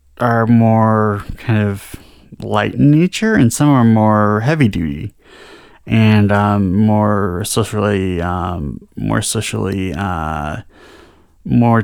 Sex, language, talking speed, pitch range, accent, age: male, English, 110 wpm, 100-115 Hz, American, 30-49